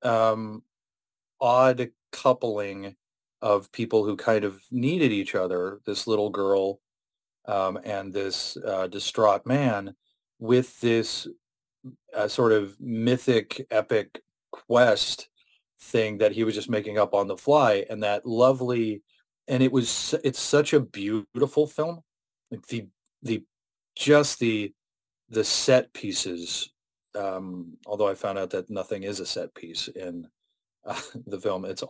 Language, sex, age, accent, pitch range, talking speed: English, male, 30-49, American, 105-125 Hz, 135 wpm